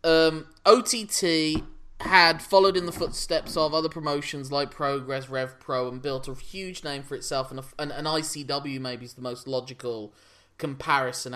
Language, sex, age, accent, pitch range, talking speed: English, male, 20-39, British, 125-160 Hz, 155 wpm